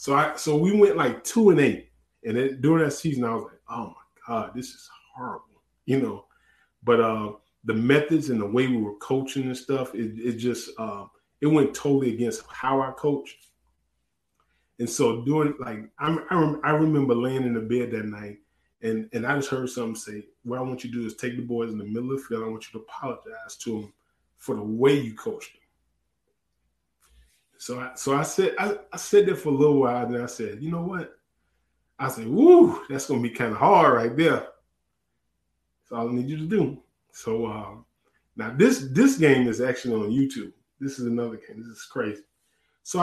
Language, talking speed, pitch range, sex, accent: English, 215 wpm, 110-145 Hz, male, American